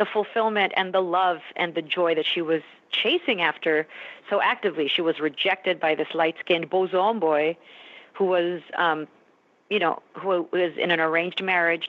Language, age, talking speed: English, 40-59, 170 wpm